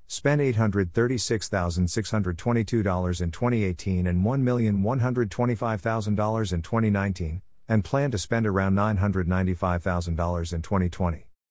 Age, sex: 50-69, male